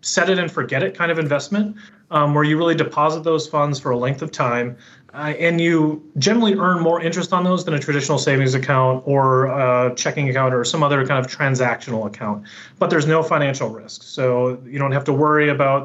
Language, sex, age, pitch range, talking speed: English, male, 30-49, 130-170 Hz, 215 wpm